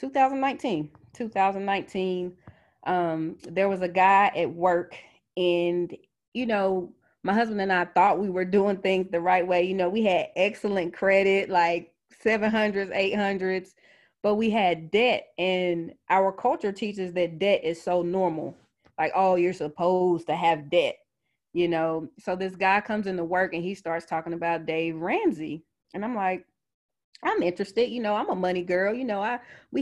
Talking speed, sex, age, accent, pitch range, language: 165 wpm, female, 20-39, American, 170-195 Hz, English